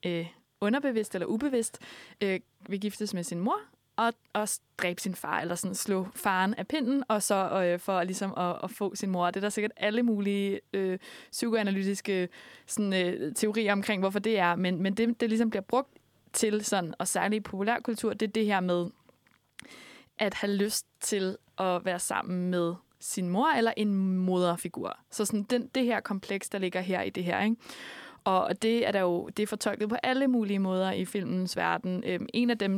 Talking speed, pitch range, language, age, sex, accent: 195 wpm, 190-230 Hz, Danish, 20-39, female, native